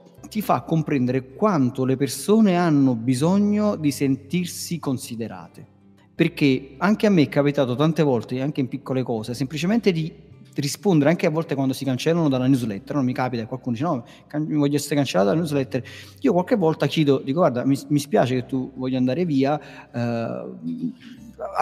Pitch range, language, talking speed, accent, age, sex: 130-165 Hz, Italian, 170 wpm, native, 40-59, male